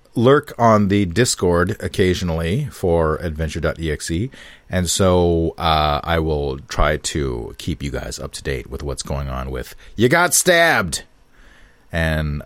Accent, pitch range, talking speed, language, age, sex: American, 85-115 Hz, 140 wpm, English, 40-59, male